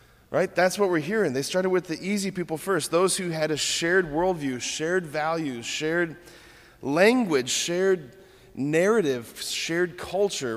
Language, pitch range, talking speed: English, 125-160 Hz, 150 wpm